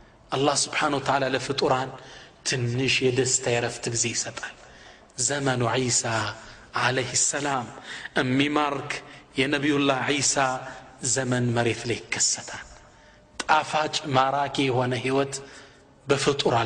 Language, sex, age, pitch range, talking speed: Amharic, male, 30-49, 130-160 Hz, 90 wpm